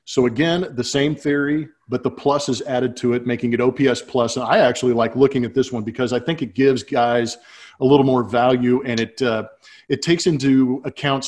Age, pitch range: 40-59, 115-130 Hz